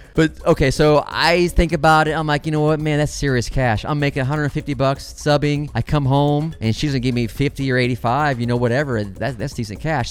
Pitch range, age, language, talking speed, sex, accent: 130-165 Hz, 20-39, English, 225 wpm, male, American